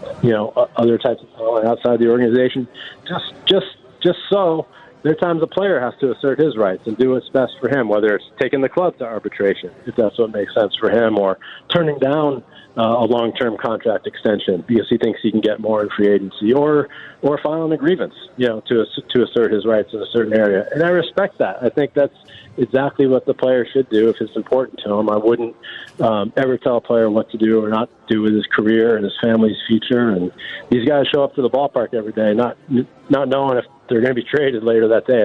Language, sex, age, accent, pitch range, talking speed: English, male, 40-59, American, 115-135 Hz, 235 wpm